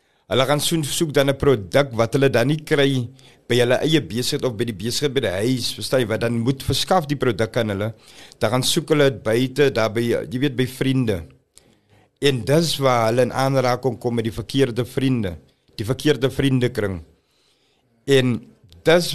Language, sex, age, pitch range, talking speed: English, male, 50-69, 115-140 Hz, 180 wpm